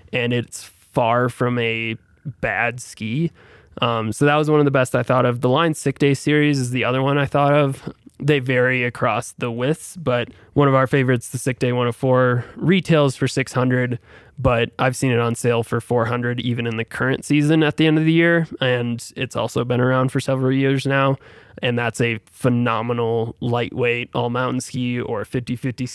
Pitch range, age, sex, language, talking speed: 120-140 Hz, 20-39, male, English, 195 wpm